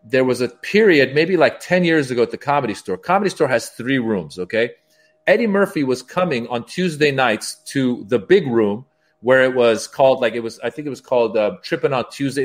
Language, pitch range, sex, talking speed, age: Italian, 130-175 Hz, male, 220 wpm, 40-59